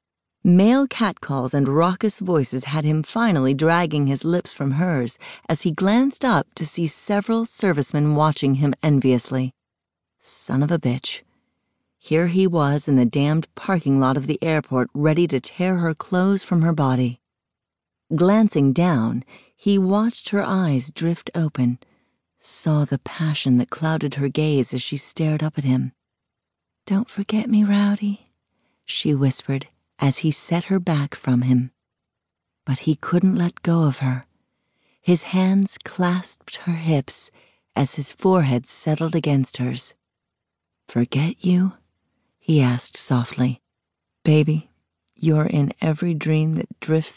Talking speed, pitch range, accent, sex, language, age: 140 wpm, 130-180 Hz, American, female, English, 40-59